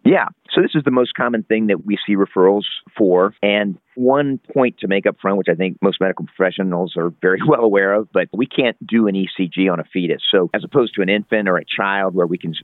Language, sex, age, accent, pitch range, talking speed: English, male, 50-69, American, 85-100 Hz, 245 wpm